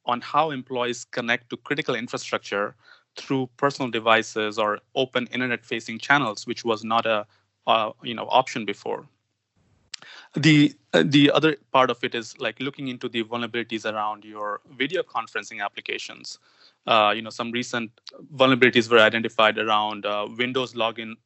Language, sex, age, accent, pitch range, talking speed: English, male, 20-39, Indian, 110-130 Hz, 150 wpm